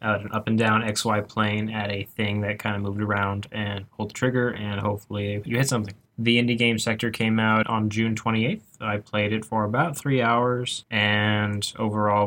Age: 10-29